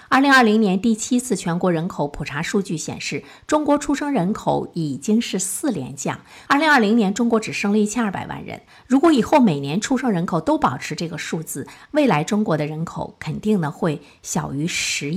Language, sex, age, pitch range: Chinese, female, 50-69, 165-230 Hz